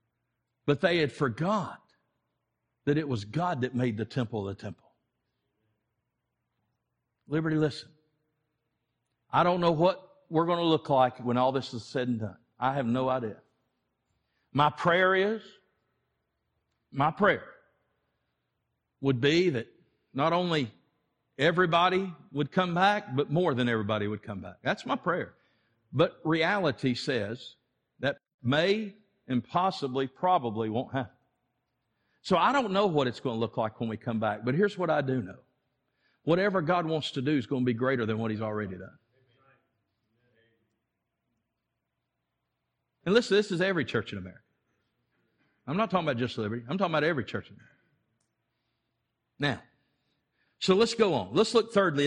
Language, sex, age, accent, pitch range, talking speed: English, male, 60-79, American, 115-170 Hz, 155 wpm